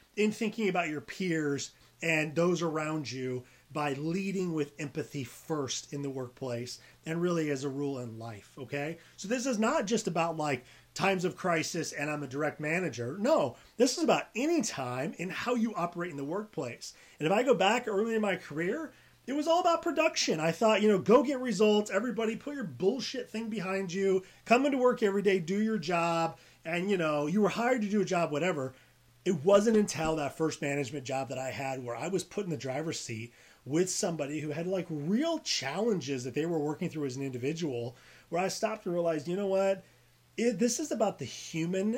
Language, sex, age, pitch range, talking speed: English, male, 30-49, 145-205 Hz, 210 wpm